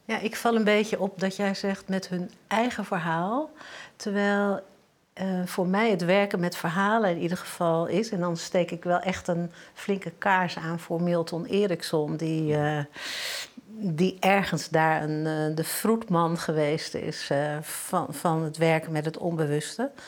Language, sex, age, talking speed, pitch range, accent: Dutch, female, 60-79, 170 wpm, 160-195 Hz, Dutch